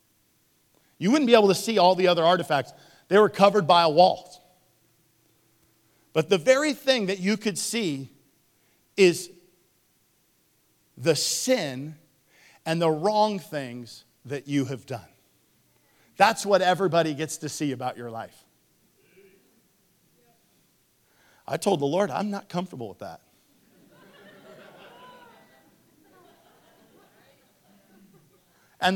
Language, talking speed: English, 110 wpm